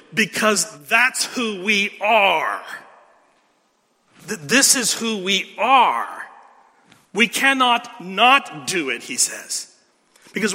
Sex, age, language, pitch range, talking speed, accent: male, 40-59, English, 195-245 Hz, 110 wpm, American